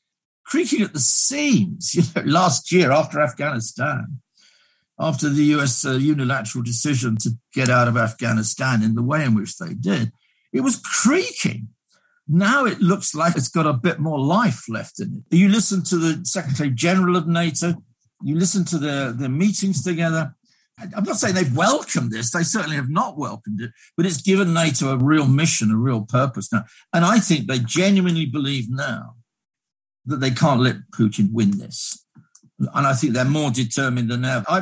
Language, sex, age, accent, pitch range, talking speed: English, male, 60-79, British, 125-175 Hz, 180 wpm